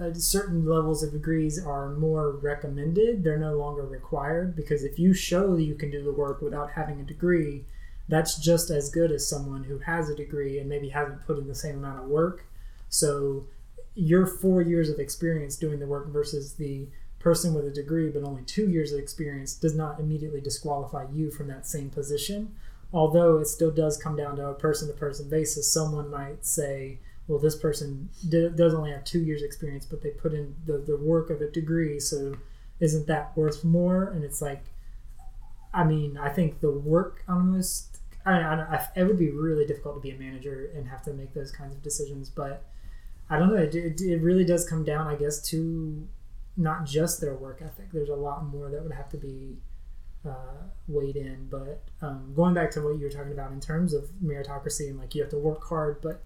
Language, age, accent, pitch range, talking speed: English, 20-39, American, 145-160 Hz, 210 wpm